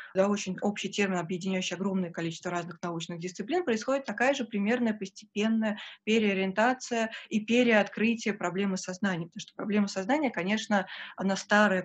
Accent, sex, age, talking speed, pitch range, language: native, female, 20-39, 135 wpm, 185-225 Hz, Russian